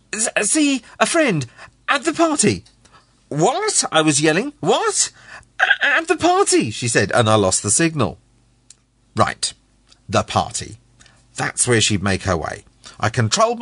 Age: 40-59